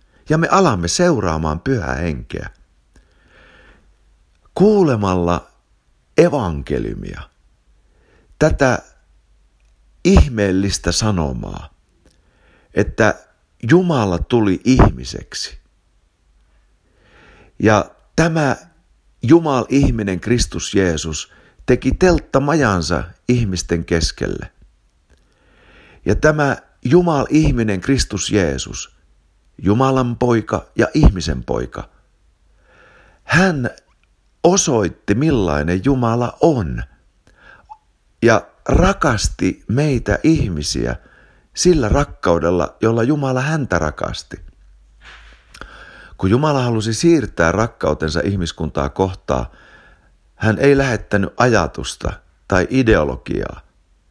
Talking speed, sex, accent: 70 wpm, male, native